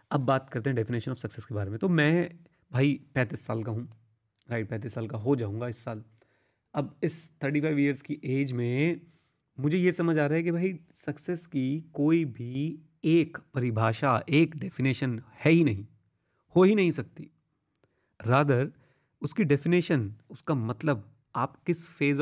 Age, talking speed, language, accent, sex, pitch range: 30-49, 175 wpm, Hindi, native, male, 125-160 Hz